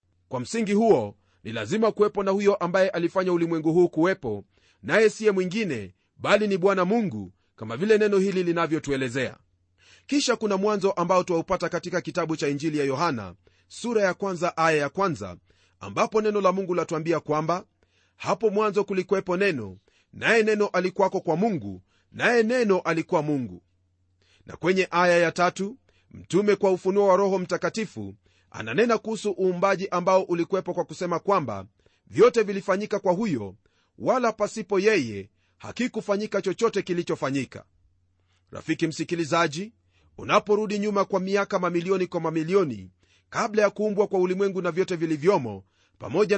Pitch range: 120-200 Hz